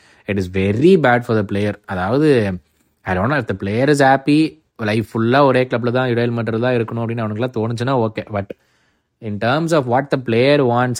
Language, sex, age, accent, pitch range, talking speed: Tamil, male, 20-39, native, 110-145 Hz, 190 wpm